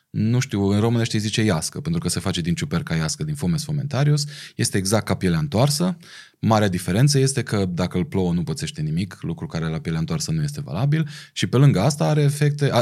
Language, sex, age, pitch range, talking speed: Romanian, male, 20-39, 100-145 Hz, 210 wpm